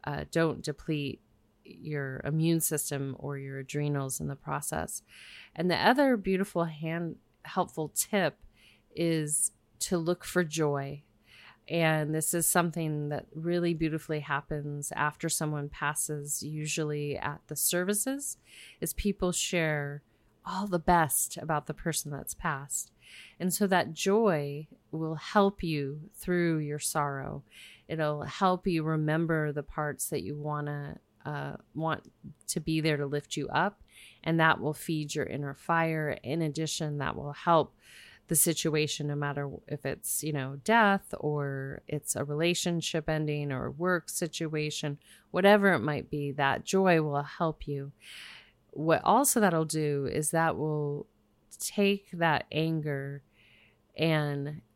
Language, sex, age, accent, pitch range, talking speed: English, female, 30-49, American, 145-165 Hz, 140 wpm